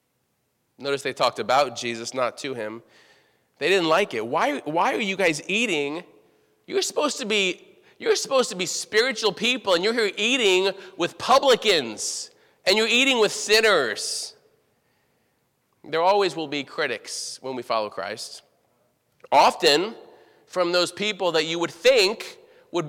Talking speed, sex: 150 wpm, male